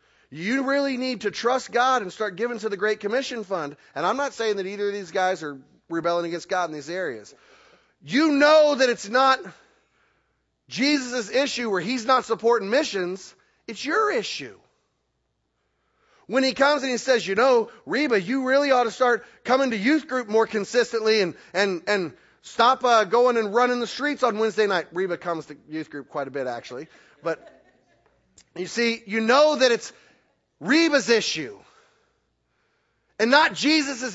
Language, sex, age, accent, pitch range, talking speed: English, male, 30-49, American, 185-270 Hz, 170 wpm